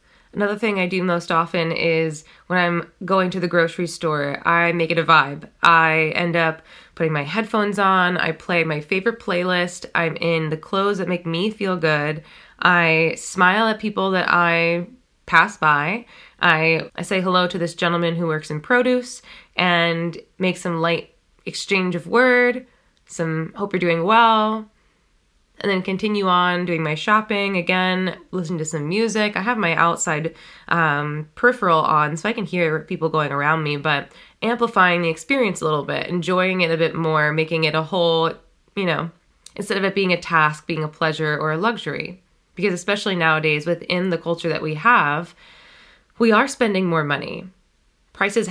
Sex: female